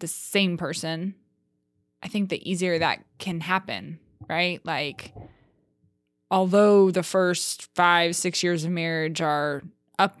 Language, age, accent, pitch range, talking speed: English, 20-39, American, 170-200 Hz, 130 wpm